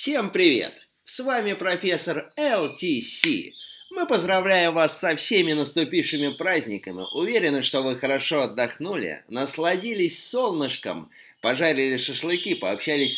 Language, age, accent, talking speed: Russian, 20-39, native, 105 wpm